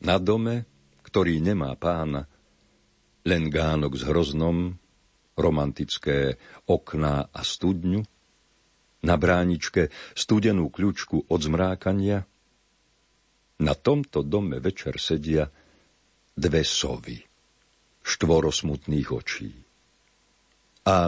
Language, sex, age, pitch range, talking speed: Slovak, male, 50-69, 75-95 Hz, 85 wpm